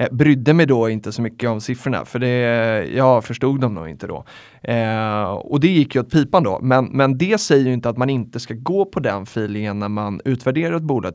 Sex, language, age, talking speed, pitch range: male, Swedish, 30-49, 225 wpm, 105-130 Hz